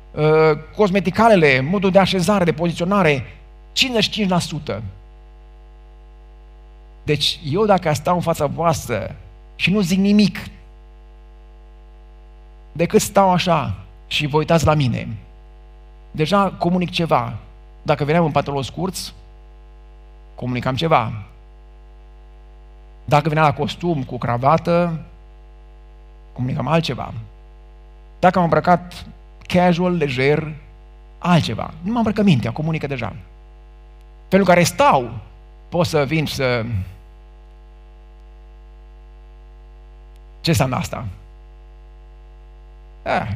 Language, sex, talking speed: Romanian, male, 95 wpm